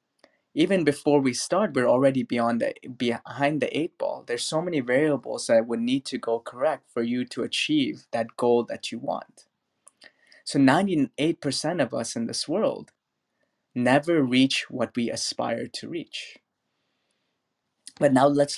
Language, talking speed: English, 150 wpm